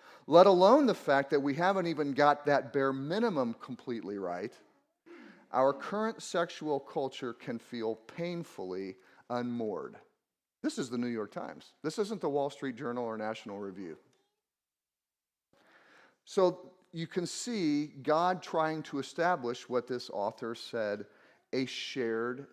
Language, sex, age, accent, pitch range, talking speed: English, male, 40-59, American, 125-190 Hz, 135 wpm